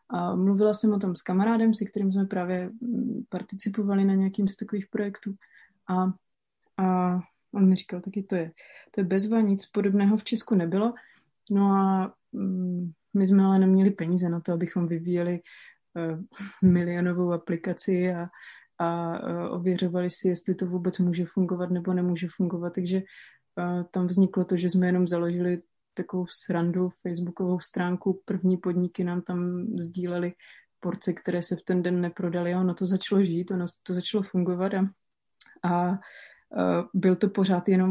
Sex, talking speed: female, 160 wpm